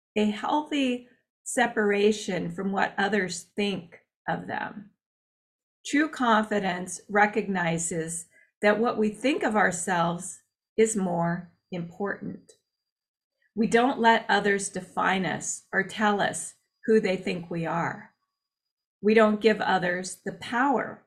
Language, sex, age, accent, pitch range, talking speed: English, female, 40-59, American, 195-235 Hz, 115 wpm